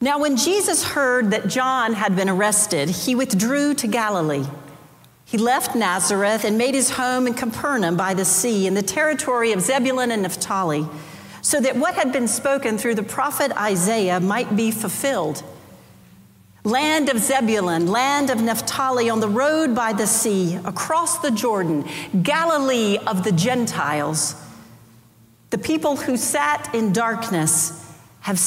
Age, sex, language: 50-69, female, English